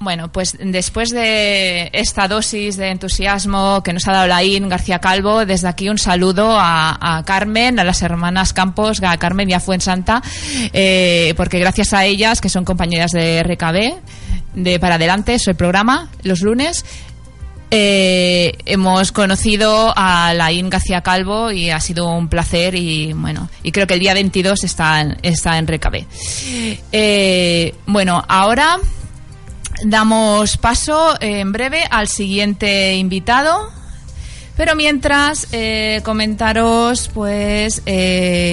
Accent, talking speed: Spanish, 145 wpm